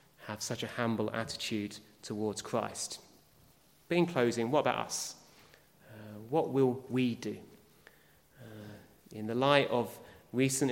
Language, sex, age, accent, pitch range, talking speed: English, male, 30-49, British, 115-145 Hz, 130 wpm